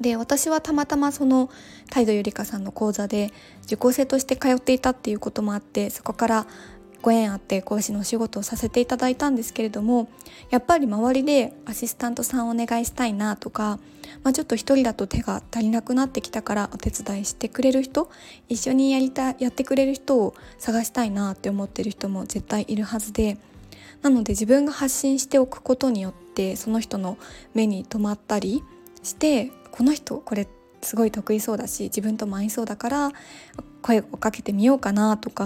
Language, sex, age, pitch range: Japanese, female, 20-39, 210-260 Hz